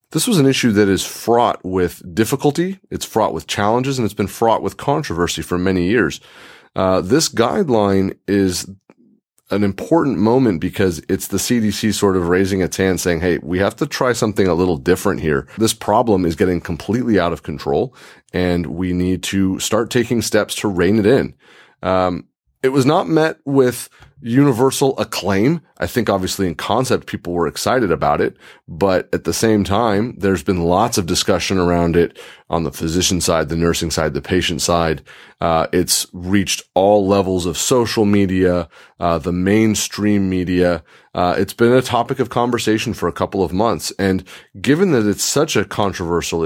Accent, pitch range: American, 90-110 Hz